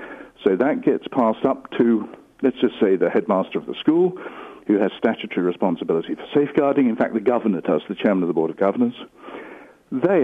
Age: 60-79